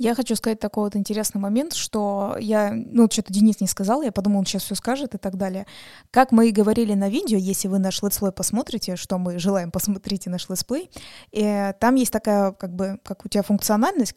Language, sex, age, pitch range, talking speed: Russian, female, 20-39, 195-230 Hz, 205 wpm